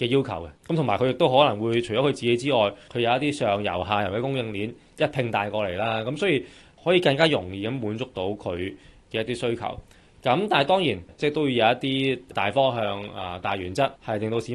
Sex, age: male, 20-39